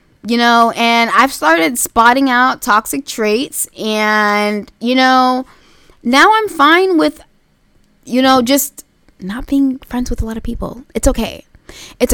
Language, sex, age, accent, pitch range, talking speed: English, female, 10-29, American, 195-270 Hz, 150 wpm